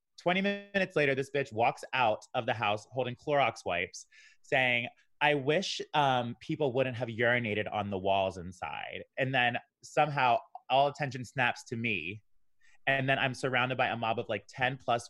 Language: English